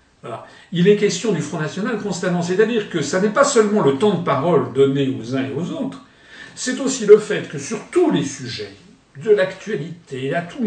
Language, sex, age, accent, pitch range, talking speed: French, male, 50-69, French, 135-195 Hz, 210 wpm